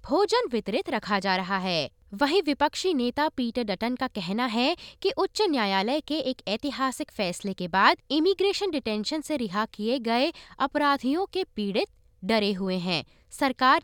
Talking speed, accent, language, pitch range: 155 wpm, native, Hindi, 215-315 Hz